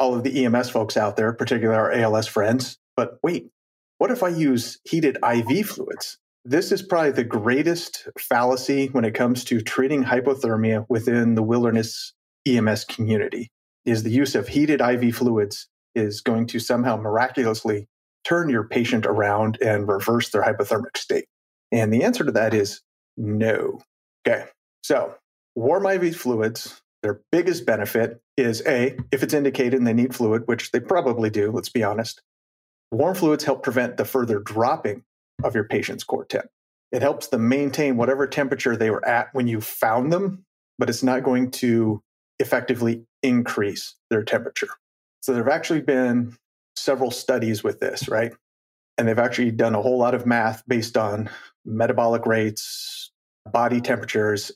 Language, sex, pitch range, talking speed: English, male, 110-130 Hz, 165 wpm